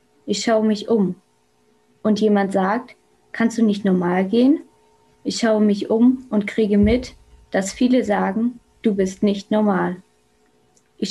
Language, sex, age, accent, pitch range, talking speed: German, female, 20-39, German, 180-230 Hz, 145 wpm